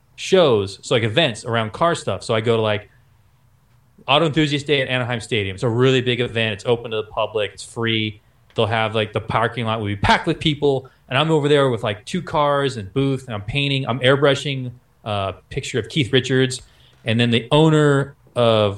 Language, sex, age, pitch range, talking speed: English, male, 20-39, 115-145 Hz, 210 wpm